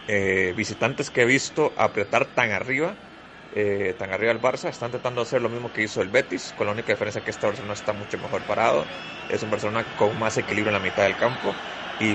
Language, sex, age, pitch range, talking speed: Spanish, male, 30-49, 100-125 Hz, 225 wpm